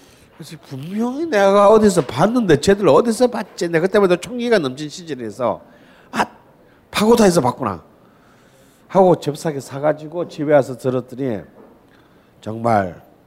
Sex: male